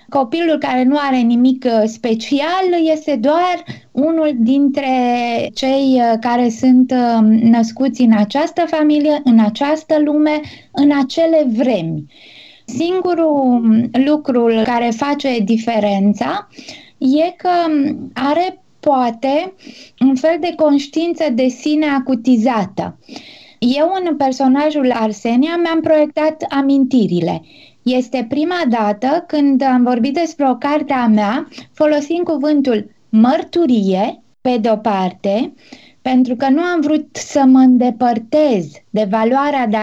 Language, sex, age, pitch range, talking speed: Romanian, female, 20-39, 240-305 Hz, 110 wpm